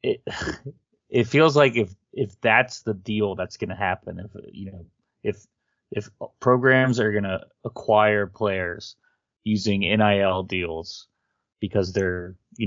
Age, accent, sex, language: 30-49, American, male, English